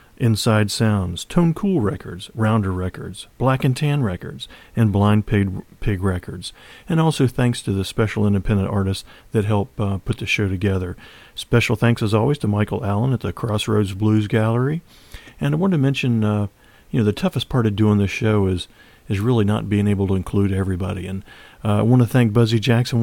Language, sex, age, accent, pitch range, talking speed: English, male, 40-59, American, 100-125 Hz, 195 wpm